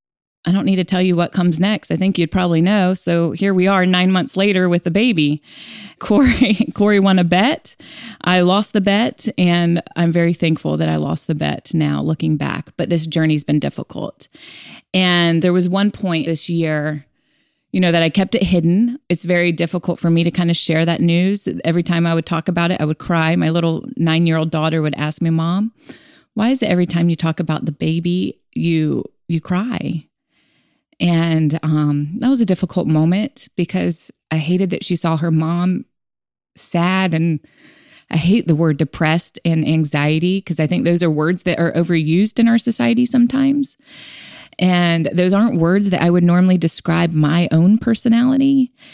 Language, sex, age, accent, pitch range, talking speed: English, female, 20-39, American, 160-190 Hz, 190 wpm